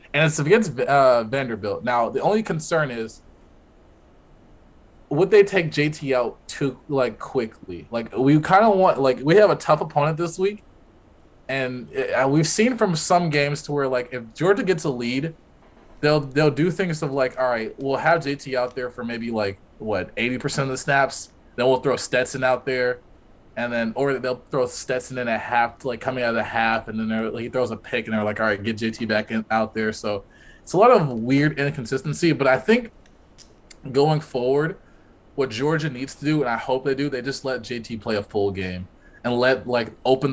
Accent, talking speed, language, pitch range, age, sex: American, 210 wpm, English, 110-145 Hz, 20-39, male